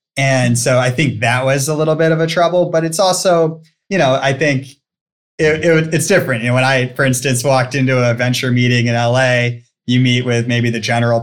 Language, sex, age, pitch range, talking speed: English, male, 20-39, 125-160 Hz, 225 wpm